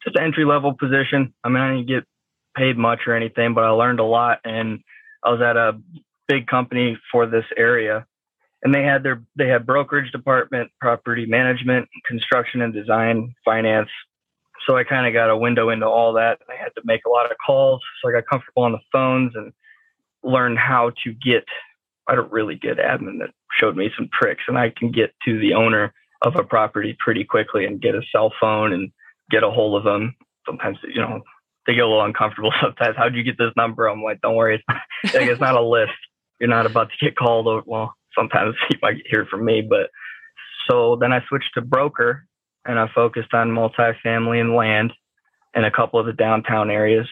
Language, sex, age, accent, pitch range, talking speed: English, male, 20-39, American, 115-135 Hz, 210 wpm